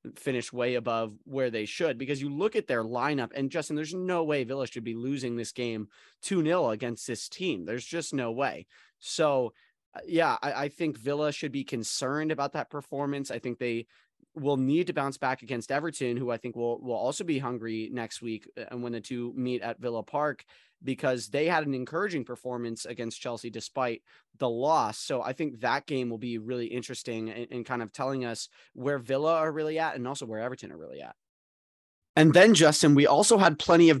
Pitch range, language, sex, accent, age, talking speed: 120-155 Hz, English, male, American, 30-49, 205 wpm